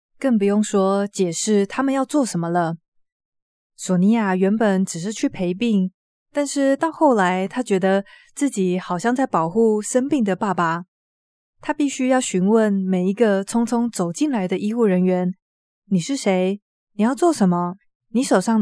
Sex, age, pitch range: female, 20-39, 185-245 Hz